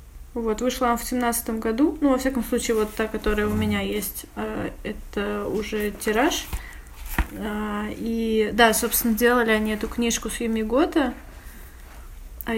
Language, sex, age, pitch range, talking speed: Russian, female, 20-39, 210-240 Hz, 140 wpm